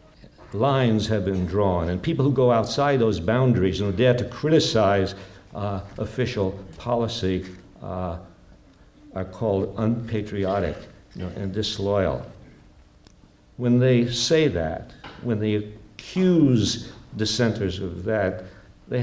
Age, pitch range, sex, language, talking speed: 60-79, 90-115 Hz, male, English, 120 wpm